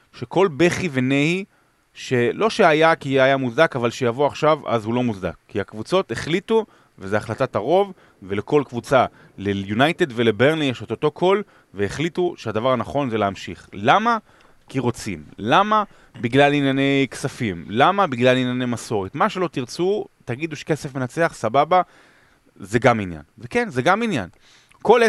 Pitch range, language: 110-160 Hz, Hebrew